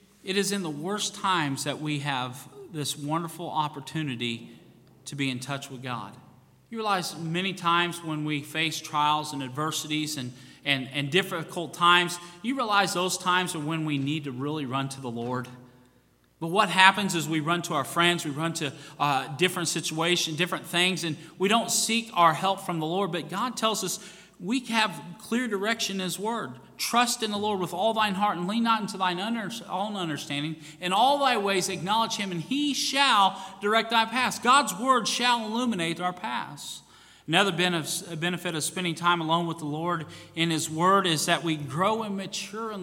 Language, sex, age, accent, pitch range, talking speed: English, male, 40-59, American, 155-195 Hz, 190 wpm